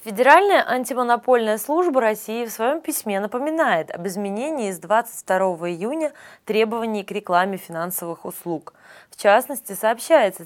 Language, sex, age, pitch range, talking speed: Russian, female, 20-39, 175-235 Hz, 120 wpm